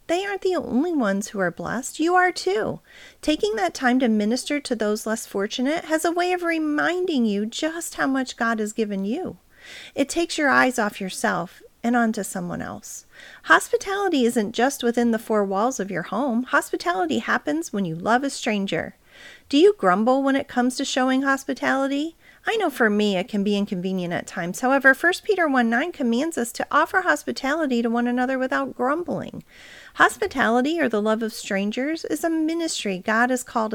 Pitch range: 215-305 Hz